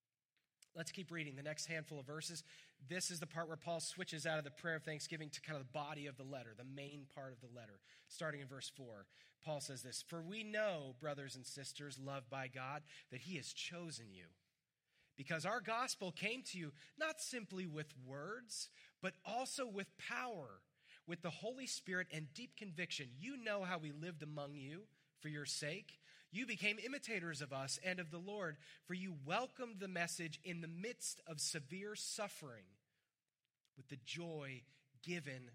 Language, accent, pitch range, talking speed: English, American, 140-185 Hz, 185 wpm